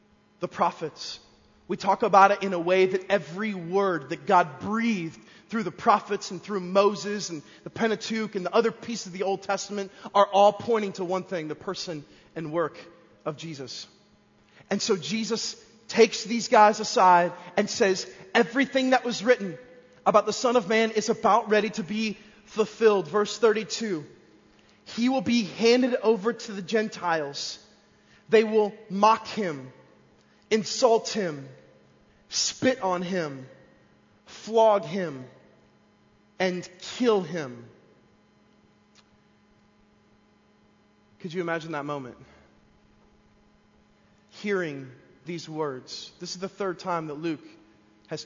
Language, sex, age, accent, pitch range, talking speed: English, male, 30-49, American, 170-220 Hz, 135 wpm